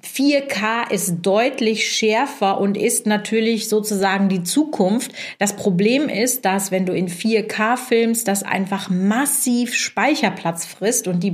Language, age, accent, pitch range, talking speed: German, 40-59, German, 180-220 Hz, 140 wpm